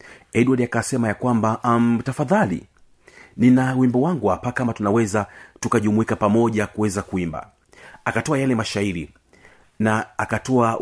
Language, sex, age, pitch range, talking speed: Swahili, male, 40-59, 95-125 Hz, 110 wpm